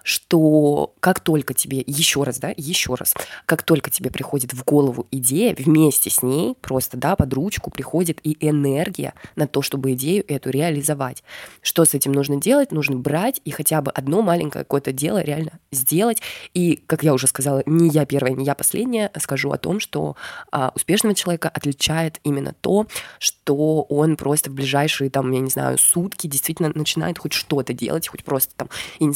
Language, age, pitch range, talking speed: Russian, 20-39, 140-165 Hz, 180 wpm